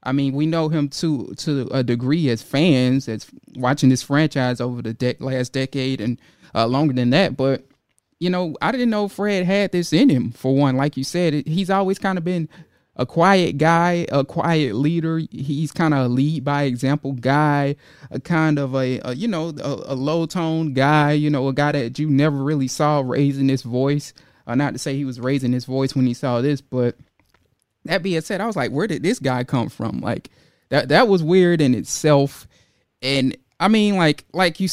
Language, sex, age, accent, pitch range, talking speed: English, male, 20-39, American, 130-160 Hz, 210 wpm